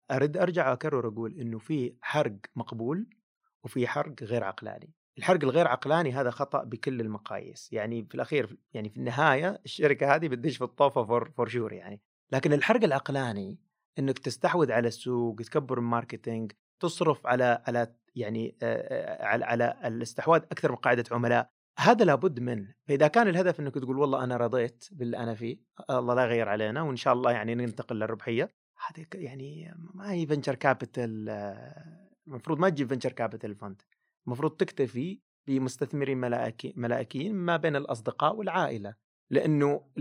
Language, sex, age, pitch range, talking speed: Arabic, male, 30-49, 115-150 Hz, 140 wpm